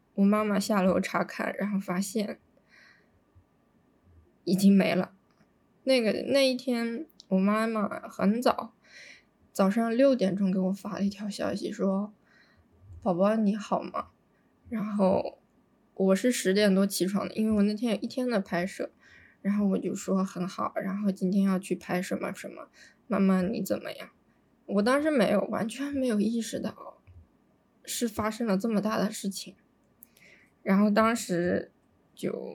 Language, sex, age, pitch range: Chinese, female, 20-39, 195-230 Hz